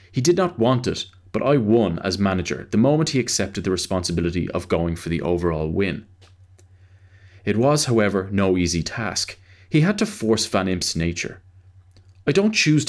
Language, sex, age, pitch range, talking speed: English, male, 30-49, 90-120 Hz, 175 wpm